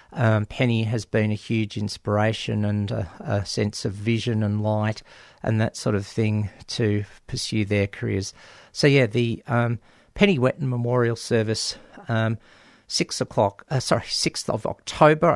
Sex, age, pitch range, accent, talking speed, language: male, 50-69, 105-125 Hz, Australian, 155 wpm, English